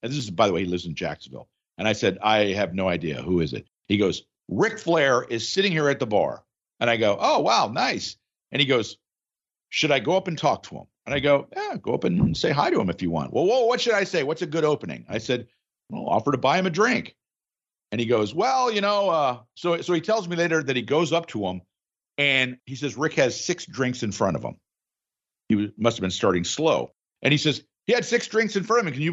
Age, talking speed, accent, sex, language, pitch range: 50-69, 270 wpm, American, male, English, 120-175 Hz